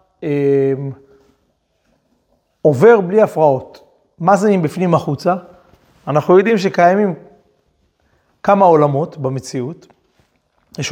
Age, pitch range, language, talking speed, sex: 30-49, 150-205 Hz, Hebrew, 80 wpm, male